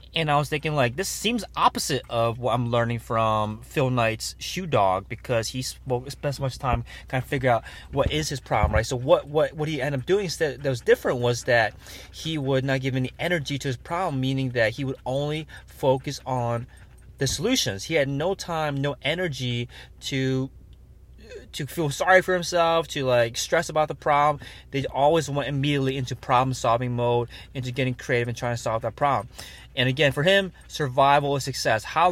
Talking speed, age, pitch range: 200 wpm, 20-39, 120-145 Hz